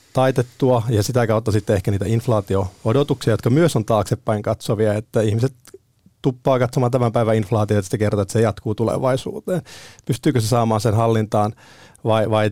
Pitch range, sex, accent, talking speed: 110-125 Hz, male, native, 160 wpm